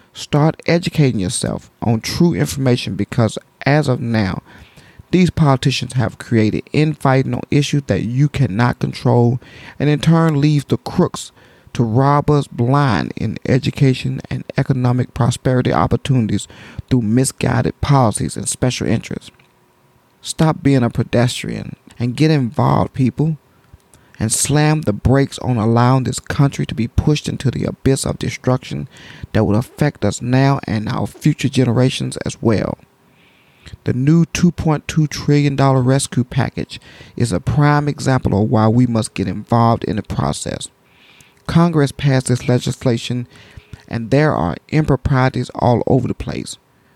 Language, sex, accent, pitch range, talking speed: English, male, American, 120-145 Hz, 140 wpm